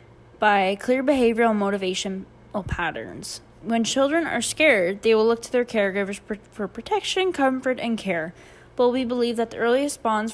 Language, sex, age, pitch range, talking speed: English, female, 10-29, 200-245 Hz, 150 wpm